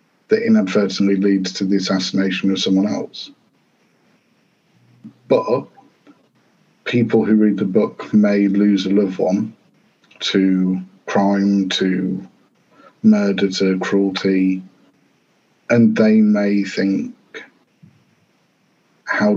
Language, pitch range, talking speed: English, 95-110 Hz, 95 wpm